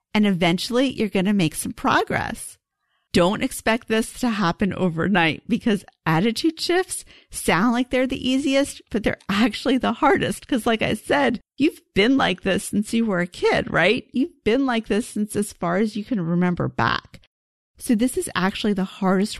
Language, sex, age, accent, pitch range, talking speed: English, female, 40-59, American, 180-235 Hz, 185 wpm